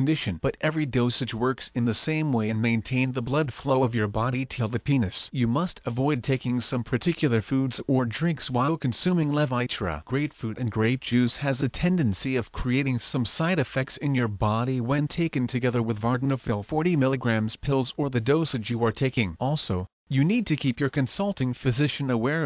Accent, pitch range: American, 120-140 Hz